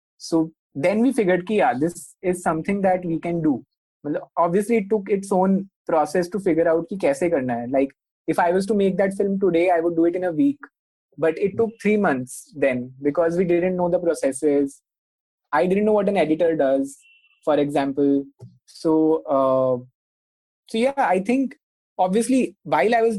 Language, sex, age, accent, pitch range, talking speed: English, male, 20-39, Indian, 155-205 Hz, 185 wpm